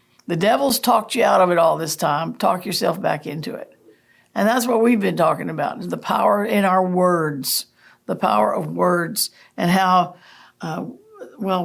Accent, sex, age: American, female, 60-79